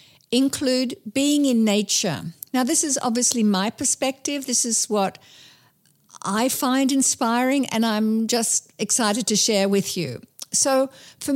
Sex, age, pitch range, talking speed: female, 50-69, 200-265 Hz, 135 wpm